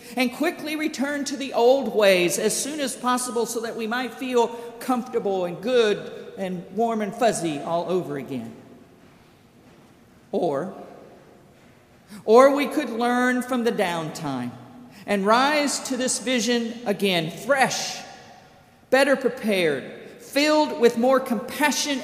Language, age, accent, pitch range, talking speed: English, 50-69, American, 205-255 Hz, 130 wpm